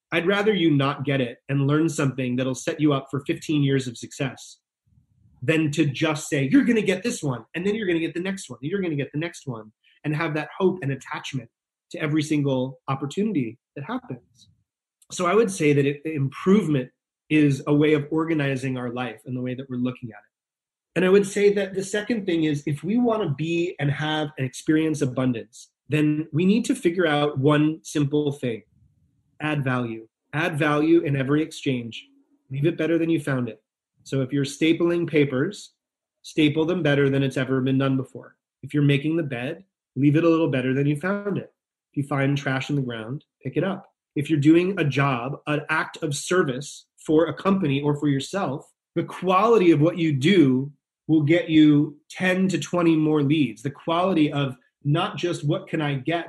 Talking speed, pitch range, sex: 210 wpm, 135-170 Hz, male